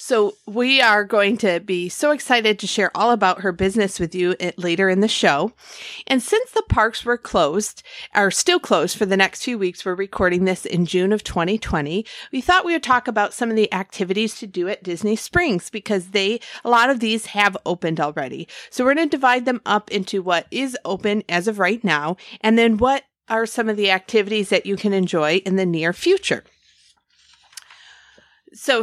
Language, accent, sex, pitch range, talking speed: English, American, female, 185-240 Hz, 200 wpm